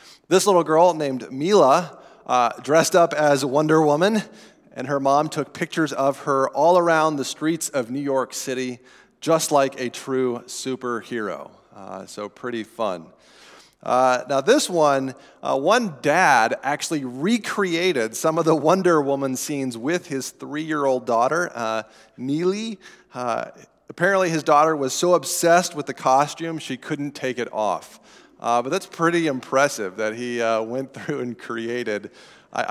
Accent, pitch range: American, 120-155 Hz